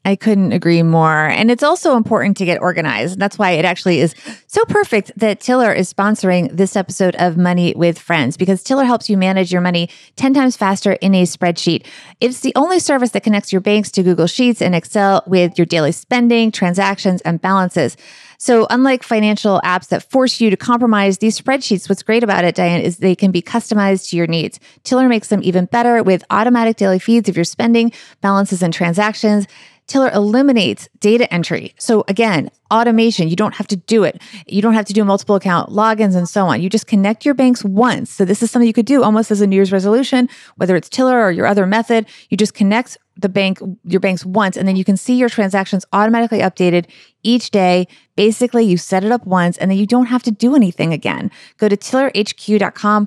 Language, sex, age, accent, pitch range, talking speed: English, female, 30-49, American, 185-230 Hz, 210 wpm